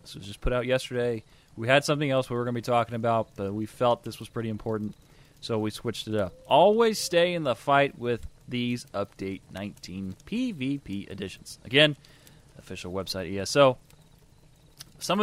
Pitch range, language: 105-150 Hz, English